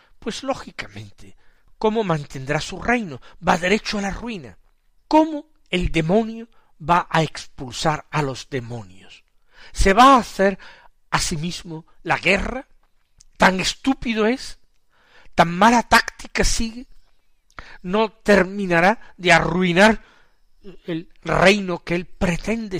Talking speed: 120 wpm